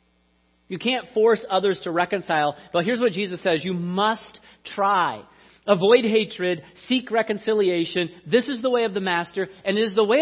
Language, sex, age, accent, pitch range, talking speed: English, male, 40-59, American, 150-215 Hz, 180 wpm